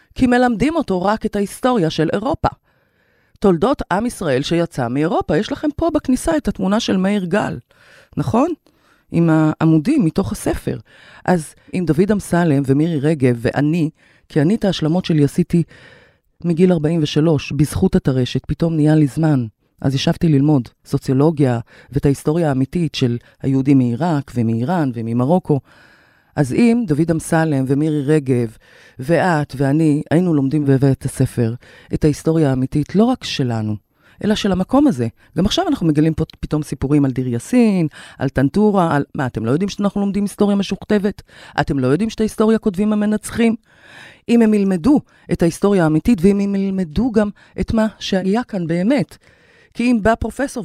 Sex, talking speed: female, 150 wpm